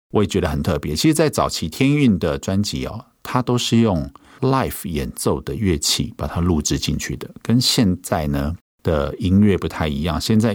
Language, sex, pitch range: Chinese, male, 75-105 Hz